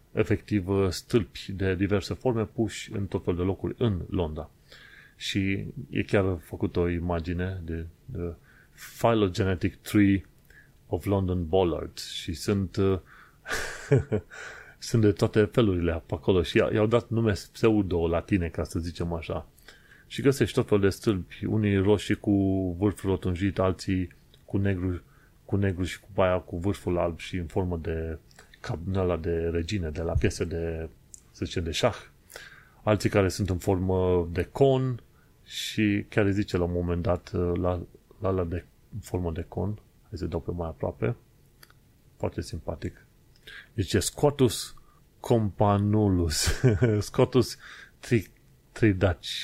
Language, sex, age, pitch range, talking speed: Romanian, male, 30-49, 90-110 Hz, 140 wpm